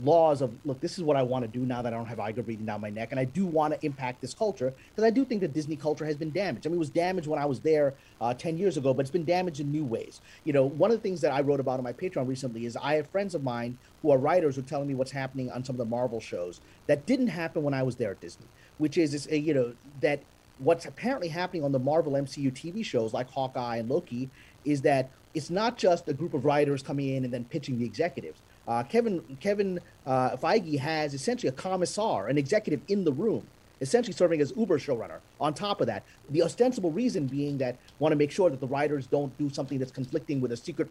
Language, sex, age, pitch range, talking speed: English, male, 30-49, 130-165 Hz, 265 wpm